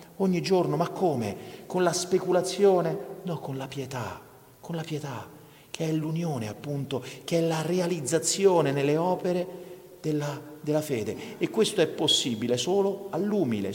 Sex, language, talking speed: male, Italian, 145 wpm